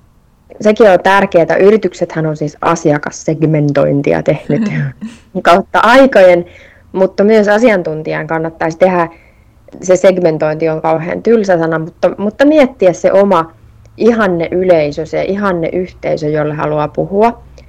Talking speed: 120 wpm